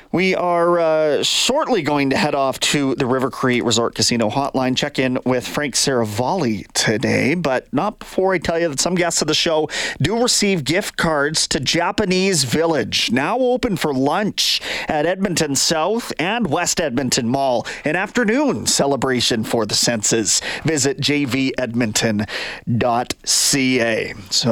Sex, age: male, 30-49